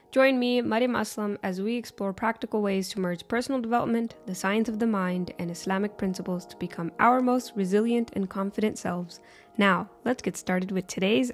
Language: English